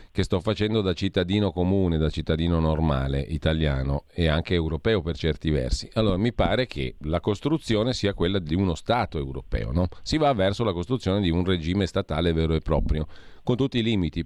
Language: Italian